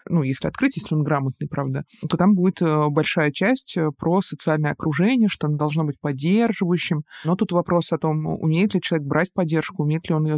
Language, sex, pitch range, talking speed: Russian, male, 155-185 Hz, 195 wpm